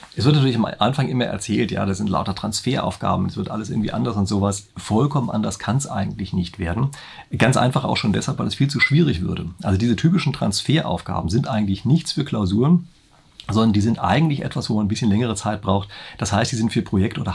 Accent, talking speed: German, 225 wpm